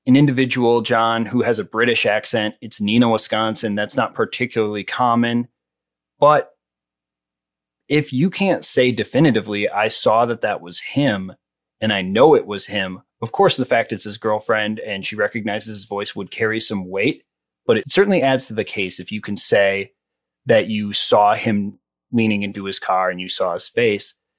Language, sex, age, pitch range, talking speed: English, male, 30-49, 100-125 Hz, 180 wpm